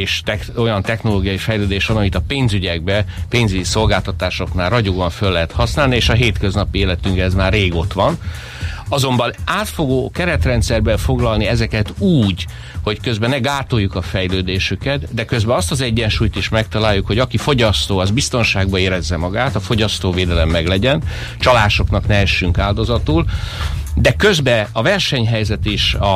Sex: male